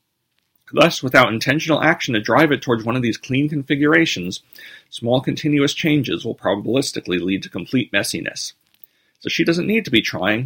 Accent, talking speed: American, 165 wpm